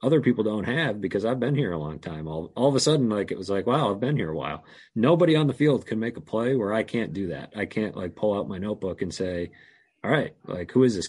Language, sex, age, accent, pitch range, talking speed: English, male, 30-49, American, 95-120 Hz, 290 wpm